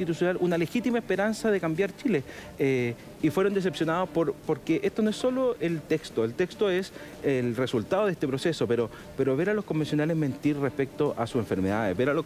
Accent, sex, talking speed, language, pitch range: Argentinian, male, 195 wpm, Spanish, 135-185 Hz